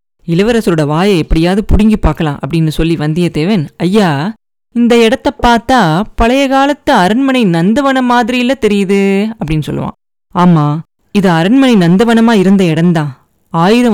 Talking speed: 115 wpm